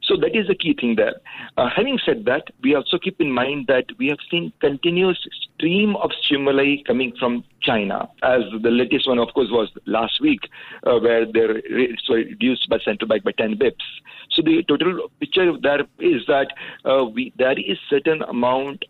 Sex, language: male, English